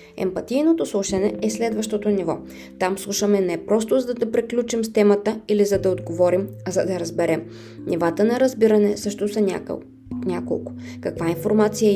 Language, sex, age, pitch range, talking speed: Bulgarian, female, 20-39, 180-215 Hz, 150 wpm